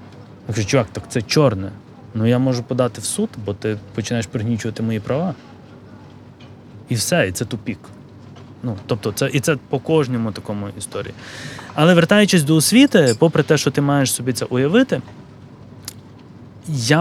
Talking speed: 160 wpm